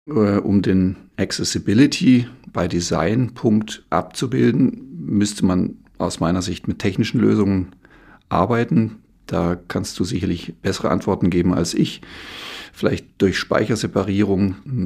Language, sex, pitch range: German, male, 90-105 Hz